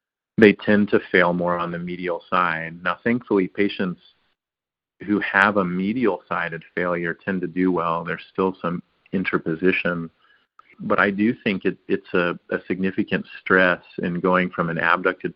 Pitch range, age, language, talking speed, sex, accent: 85-95 Hz, 40-59, English, 160 wpm, male, American